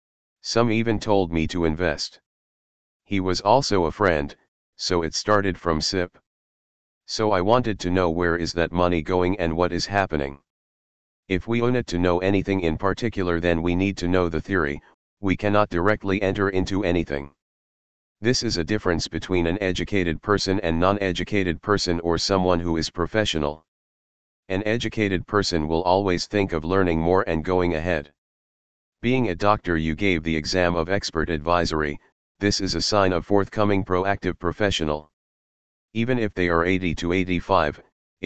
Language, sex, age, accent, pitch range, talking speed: Tamil, male, 40-59, American, 85-100 Hz, 165 wpm